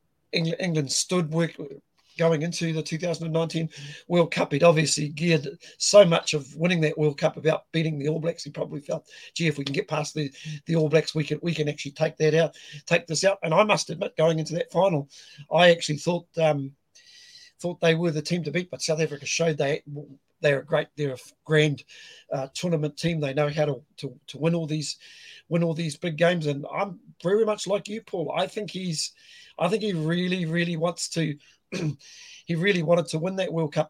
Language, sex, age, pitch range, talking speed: English, male, 40-59, 150-175 Hz, 210 wpm